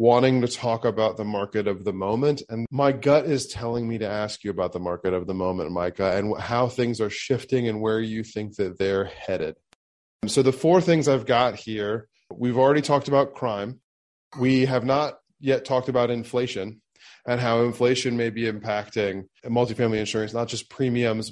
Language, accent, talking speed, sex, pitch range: English, American, 190 wpm, male, 105-130 Hz